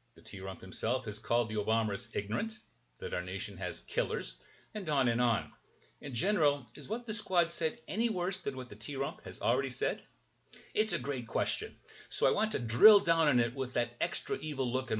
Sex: male